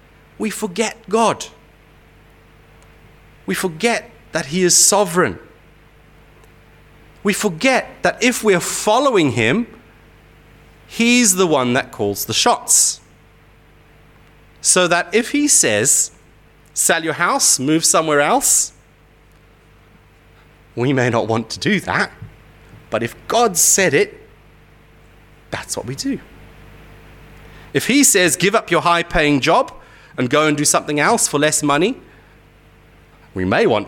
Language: English